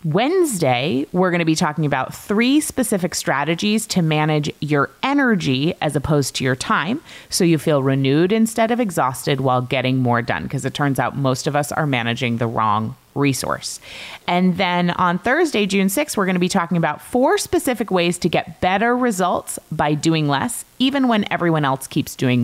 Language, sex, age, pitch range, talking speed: English, female, 30-49, 145-225 Hz, 185 wpm